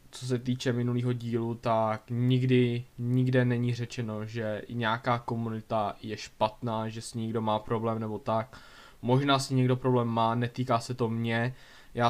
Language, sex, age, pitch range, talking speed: Czech, male, 10-29, 120-130 Hz, 160 wpm